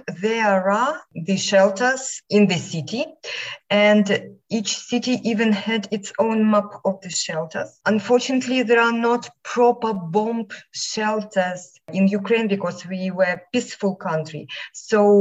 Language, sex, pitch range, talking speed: English, female, 190-225 Hz, 135 wpm